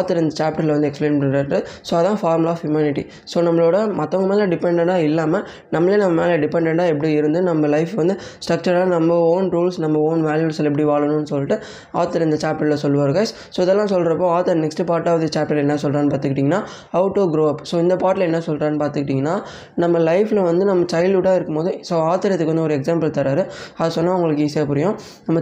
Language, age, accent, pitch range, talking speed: Tamil, 20-39, native, 155-180 Hz, 195 wpm